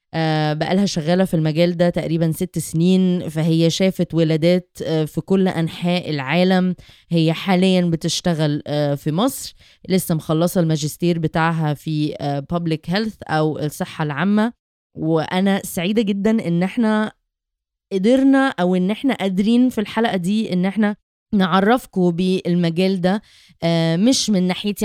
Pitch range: 170-210 Hz